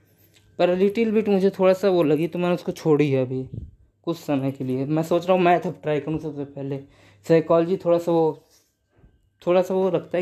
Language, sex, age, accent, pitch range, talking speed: Hindi, female, 20-39, native, 130-180 Hz, 210 wpm